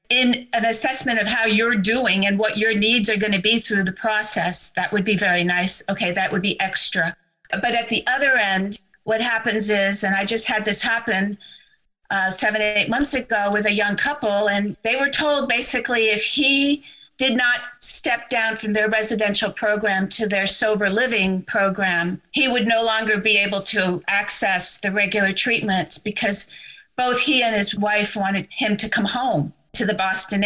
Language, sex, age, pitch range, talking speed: English, female, 50-69, 195-230 Hz, 185 wpm